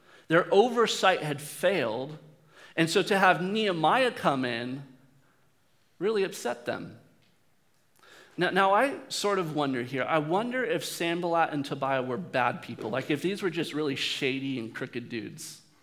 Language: English